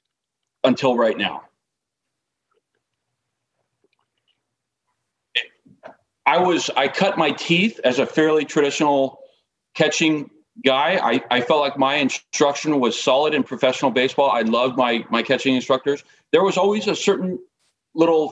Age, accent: 40-59, American